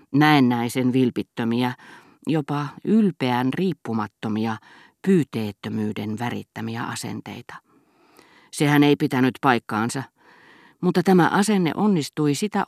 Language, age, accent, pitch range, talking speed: Finnish, 40-59, native, 115-145 Hz, 80 wpm